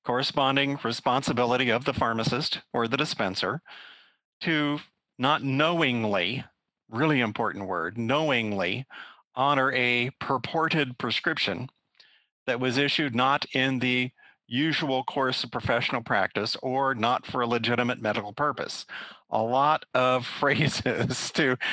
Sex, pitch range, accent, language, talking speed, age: male, 125-155 Hz, American, English, 115 wpm, 50-69